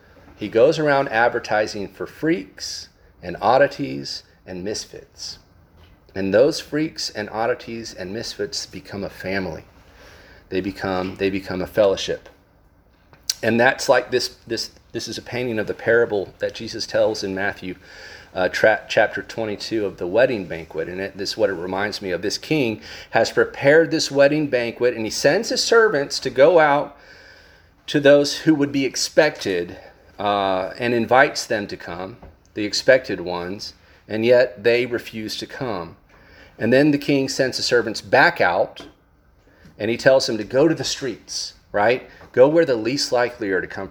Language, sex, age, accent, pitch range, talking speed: English, male, 40-59, American, 95-130 Hz, 165 wpm